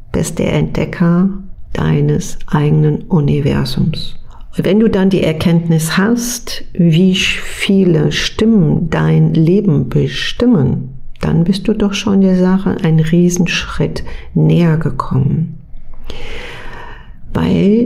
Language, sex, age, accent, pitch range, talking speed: German, female, 50-69, German, 160-195 Hz, 105 wpm